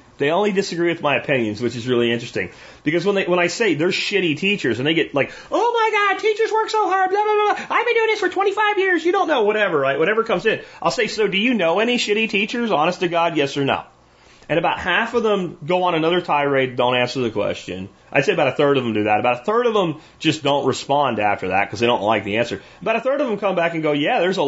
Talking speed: 275 wpm